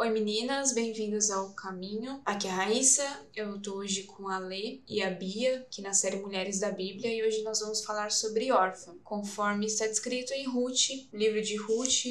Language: Portuguese